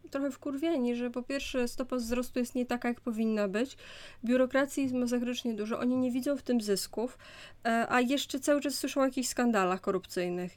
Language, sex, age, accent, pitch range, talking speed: Polish, female, 20-39, native, 210-250 Hz, 180 wpm